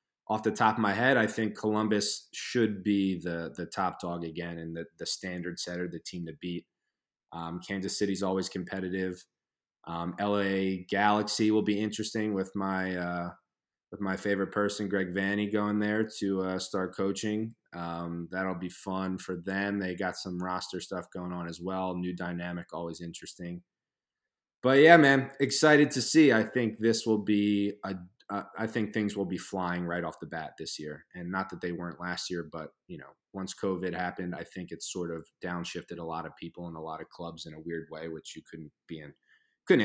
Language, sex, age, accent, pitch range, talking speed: English, male, 20-39, American, 85-100 Hz, 200 wpm